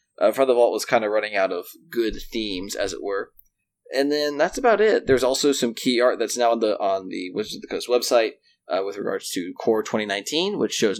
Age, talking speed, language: 20-39, 240 wpm, English